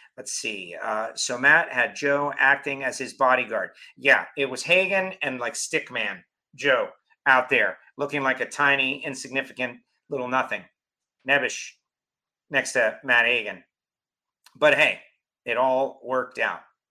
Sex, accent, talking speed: male, American, 140 wpm